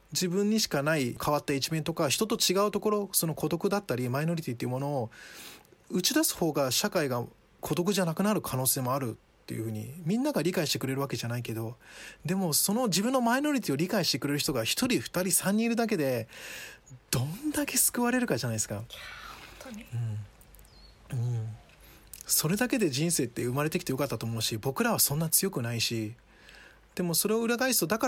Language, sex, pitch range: Japanese, male, 125-205 Hz